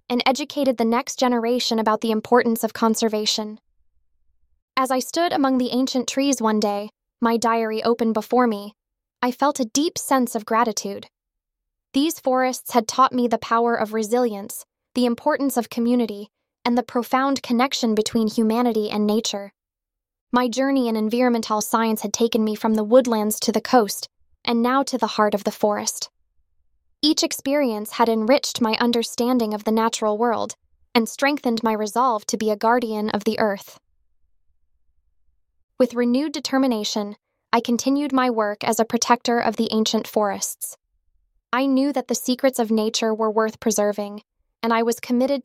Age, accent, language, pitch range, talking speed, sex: 10-29, American, English, 215-245 Hz, 160 wpm, female